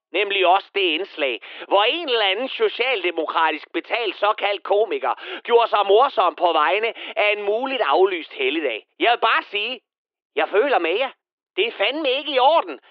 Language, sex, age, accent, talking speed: Danish, male, 30-49, native, 165 wpm